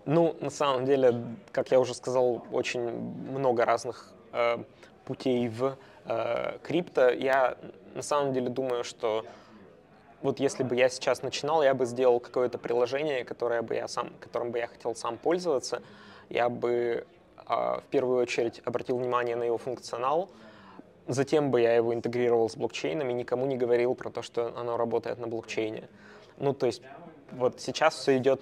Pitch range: 115-130 Hz